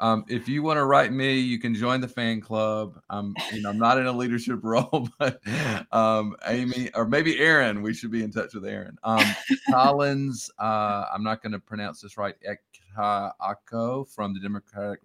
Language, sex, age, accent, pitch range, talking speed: English, male, 40-59, American, 95-120 Hz, 185 wpm